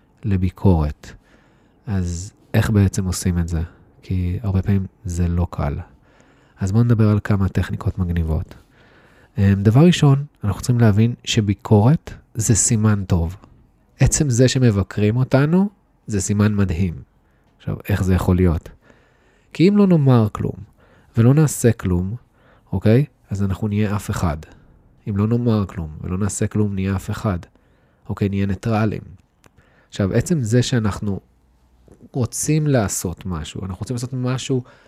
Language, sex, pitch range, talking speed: Hebrew, male, 95-130 Hz, 135 wpm